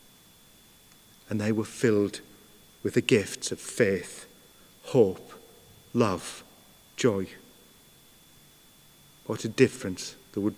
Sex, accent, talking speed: male, British, 95 wpm